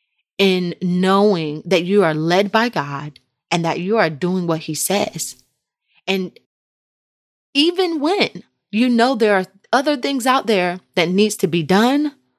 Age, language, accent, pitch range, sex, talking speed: 30-49, English, American, 165-220 Hz, female, 155 wpm